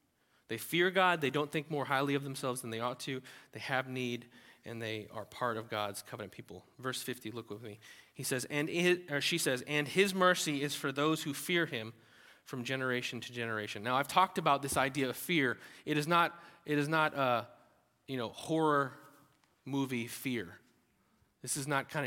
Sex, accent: male, American